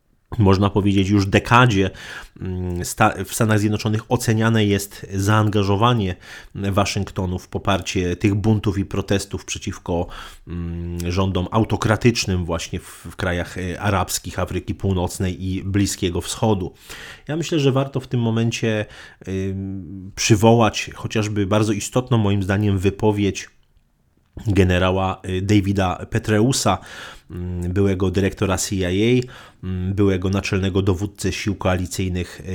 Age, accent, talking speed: 30-49, native, 100 wpm